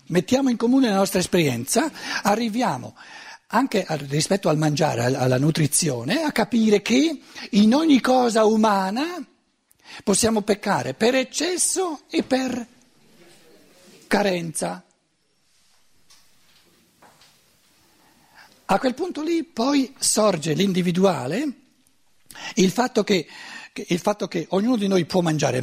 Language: Italian